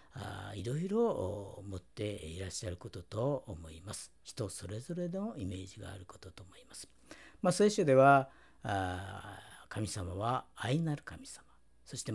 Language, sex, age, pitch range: Japanese, female, 50-69, 95-140 Hz